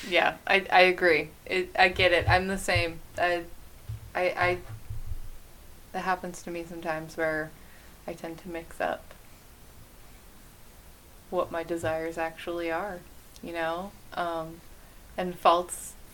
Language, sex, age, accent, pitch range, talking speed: English, female, 20-39, American, 165-205 Hz, 130 wpm